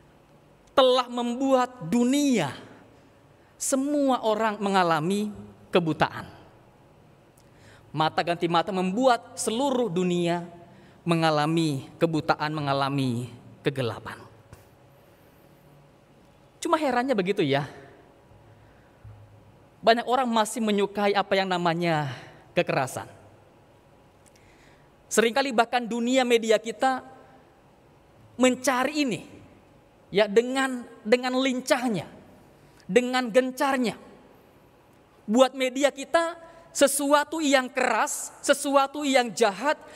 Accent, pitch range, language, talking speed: native, 175-265 Hz, Indonesian, 75 wpm